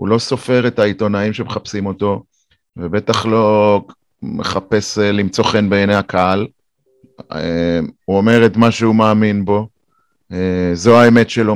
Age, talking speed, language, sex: 30-49, 125 wpm, Hebrew, male